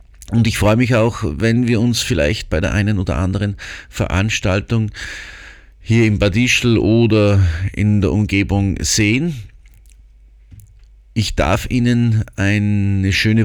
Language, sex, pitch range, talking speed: German, male, 90-115 Hz, 130 wpm